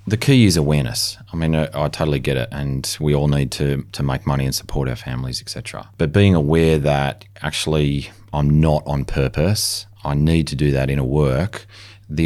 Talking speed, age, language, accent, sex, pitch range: 210 wpm, 30-49, English, Australian, male, 75-100 Hz